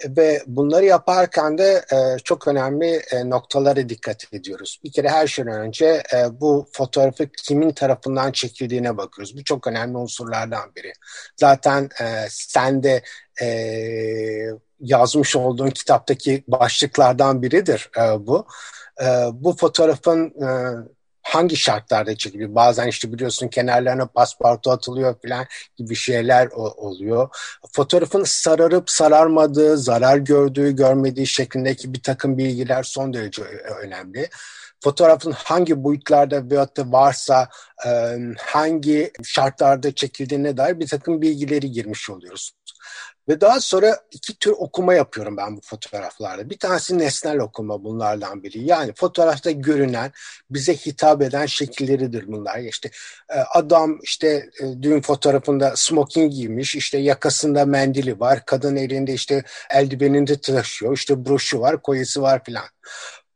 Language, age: Turkish, 60-79